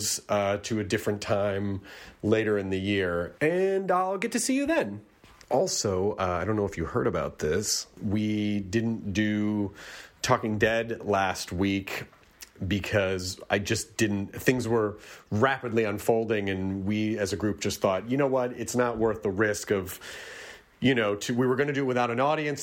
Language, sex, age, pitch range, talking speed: English, male, 30-49, 95-115 Hz, 185 wpm